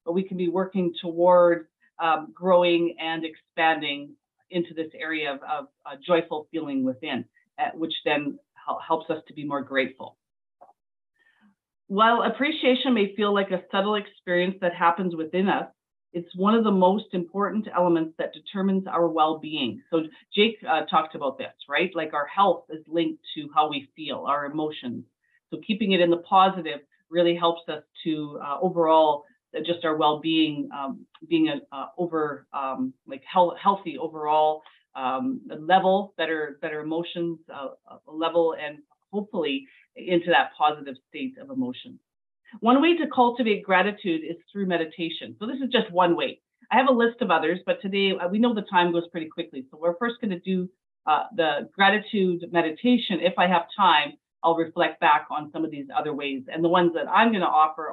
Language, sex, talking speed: English, female, 175 wpm